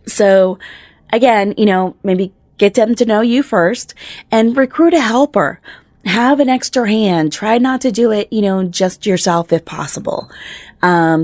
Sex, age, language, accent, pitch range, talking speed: female, 20-39, English, American, 185-230 Hz, 165 wpm